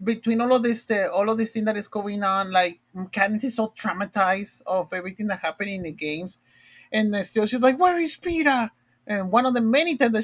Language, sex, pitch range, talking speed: English, male, 155-210 Hz, 235 wpm